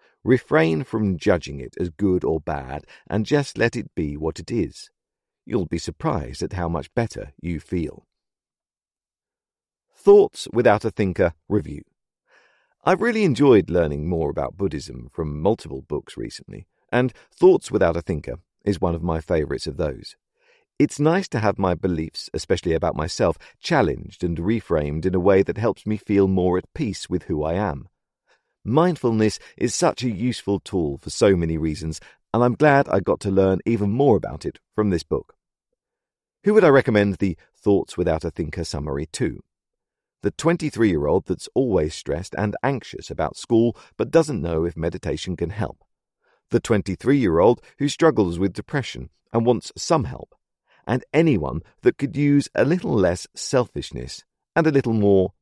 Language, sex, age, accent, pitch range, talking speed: English, male, 50-69, British, 85-140 Hz, 165 wpm